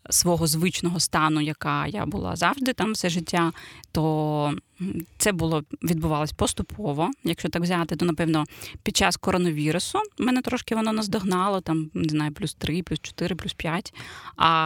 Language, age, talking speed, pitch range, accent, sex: Ukrainian, 20-39, 150 wpm, 165-195 Hz, native, female